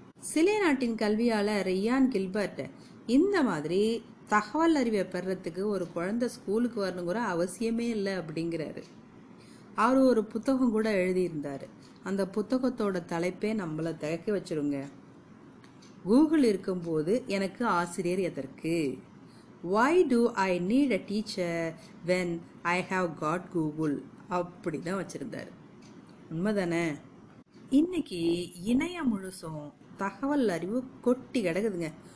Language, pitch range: Tamil, 170-235 Hz